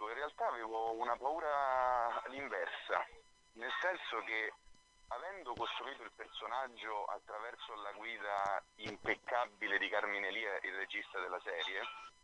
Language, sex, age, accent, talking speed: Italian, male, 40-59, native, 120 wpm